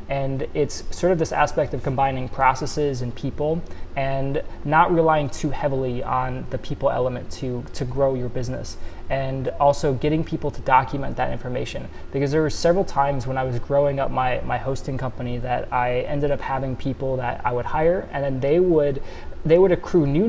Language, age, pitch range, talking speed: English, 20-39, 130-145 Hz, 190 wpm